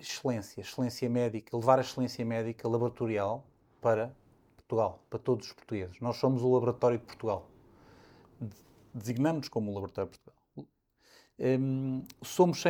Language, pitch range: Portuguese, 115-145 Hz